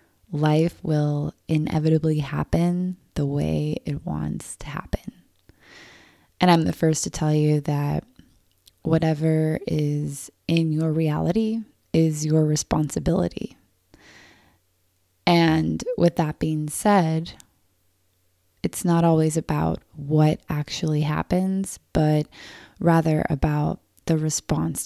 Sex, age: female, 20-39